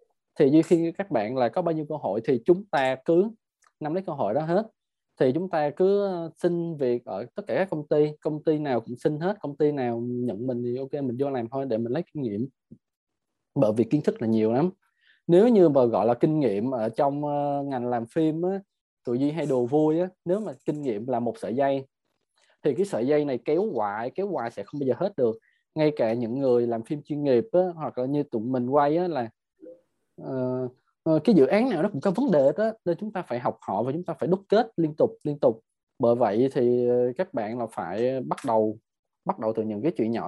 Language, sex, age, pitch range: Vietnamese, male, 20-39, 120-170 Hz